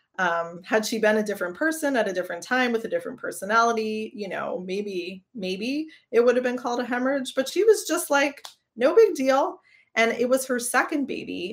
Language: English